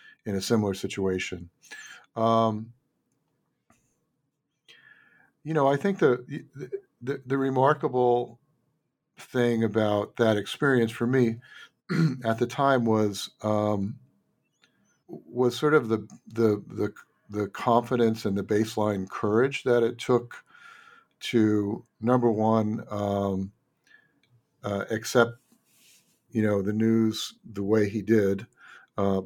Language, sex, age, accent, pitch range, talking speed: English, male, 50-69, American, 100-120 Hz, 115 wpm